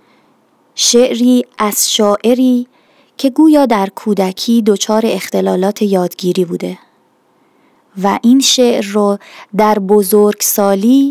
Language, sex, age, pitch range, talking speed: Persian, female, 20-39, 205-250 Hz, 90 wpm